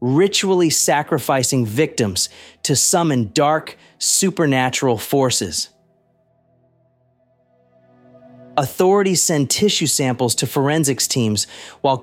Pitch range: 115-155 Hz